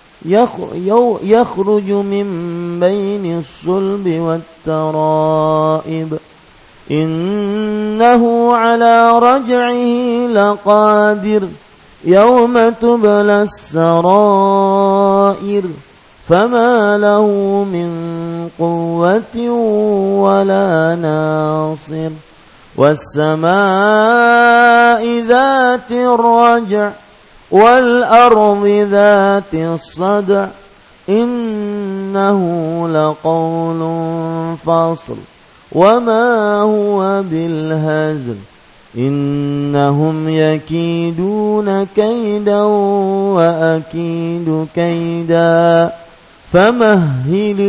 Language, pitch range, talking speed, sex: English, 160-210 Hz, 45 wpm, male